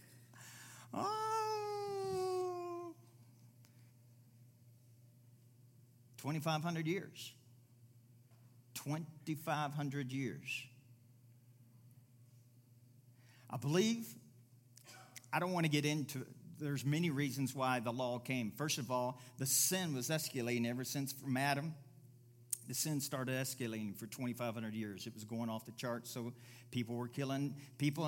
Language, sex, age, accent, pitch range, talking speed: English, male, 50-69, American, 120-145 Hz, 105 wpm